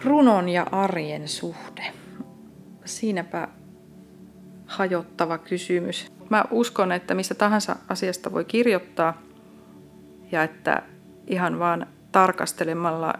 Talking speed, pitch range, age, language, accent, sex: 90 wpm, 165-200 Hz, 30-49, Finnish, native, female